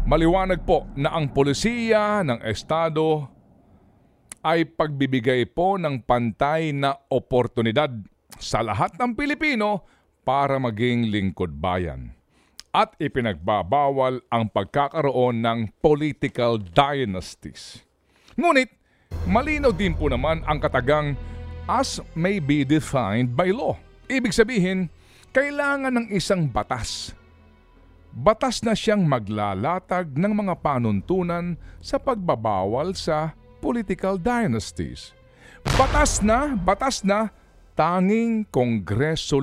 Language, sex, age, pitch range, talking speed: Filipino, male, 50-69, 115-195 Hz, 100 wpm